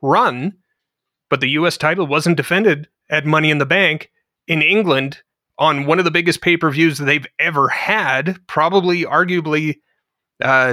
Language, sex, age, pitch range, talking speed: English, male, 30-49, 130-175 Hz, 150 wpm